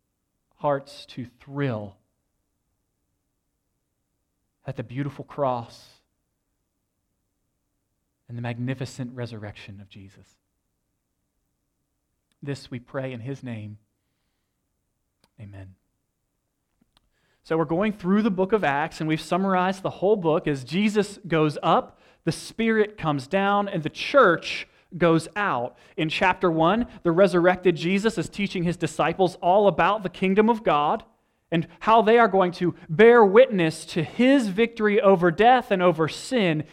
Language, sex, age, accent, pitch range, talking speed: English, male, 30-49, American, 140-205 Hz, 130 wpm